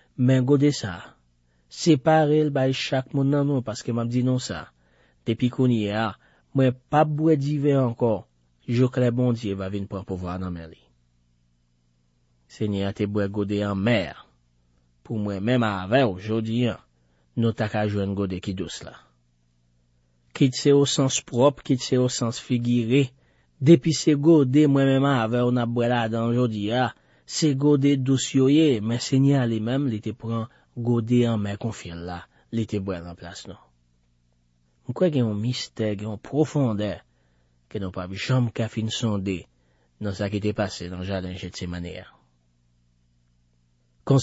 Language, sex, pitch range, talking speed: French, male, 90-130 Hz, 145 wpm